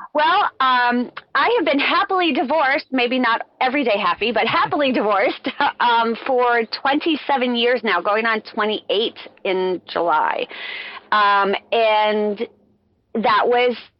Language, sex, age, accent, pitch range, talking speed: English, female, 30-49, American, 190-240 Hz, 125 wpm